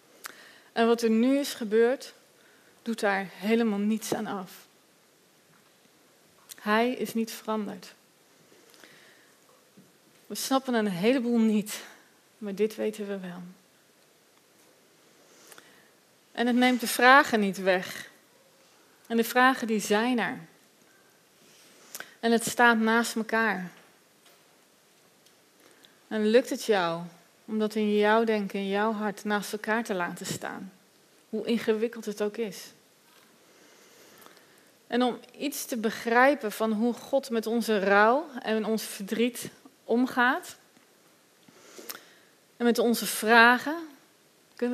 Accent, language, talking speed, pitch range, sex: Dutch, Dutch, 115 wpm, 210-240 Hz, female